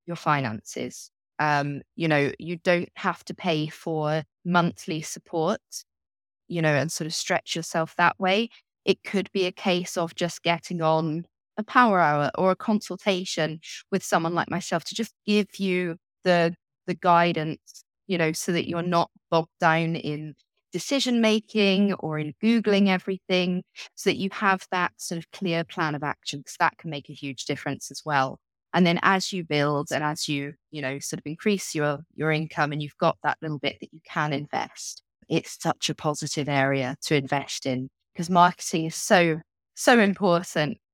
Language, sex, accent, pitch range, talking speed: English, female, British, 155-190 Hz, 180 wpm